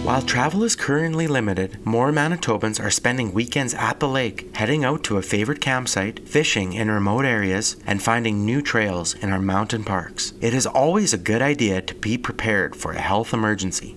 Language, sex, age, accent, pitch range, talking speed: English, male, 30-49, American, 100-140 Hz, 190 wpm